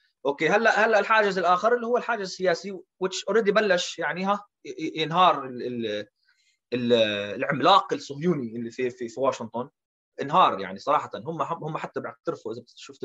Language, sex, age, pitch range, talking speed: Arabic, male, 30-49, 125-175 Hz, 170 wpm